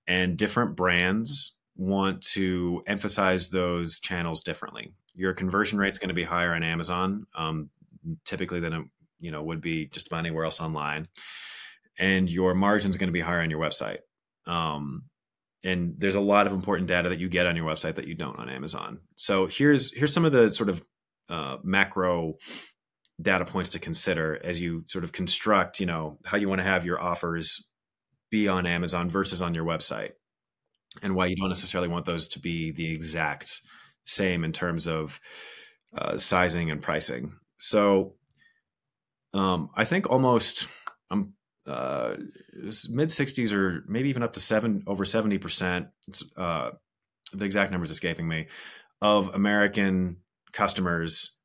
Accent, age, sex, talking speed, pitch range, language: American, 30-49, male, 165 wpm, 85-100 Hz, English